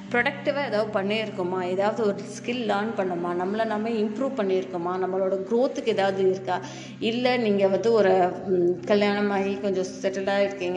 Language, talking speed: Tamil, 135 wpm